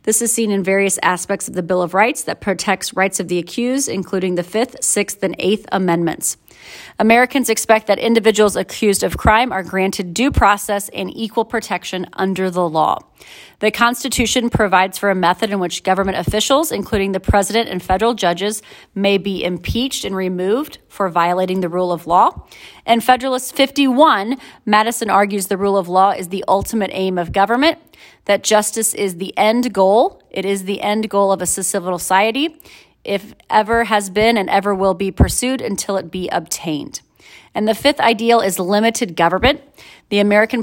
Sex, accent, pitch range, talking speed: female, American, 190-230 Hz, 175 wpm